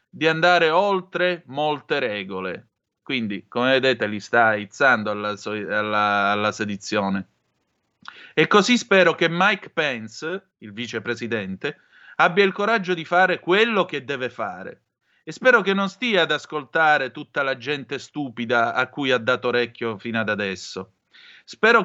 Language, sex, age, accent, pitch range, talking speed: Italian, male, 30-49, native, 110-155 Hz, 145 wpm